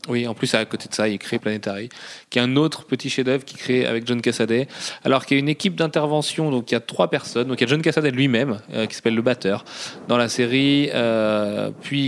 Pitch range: 120-140 Hz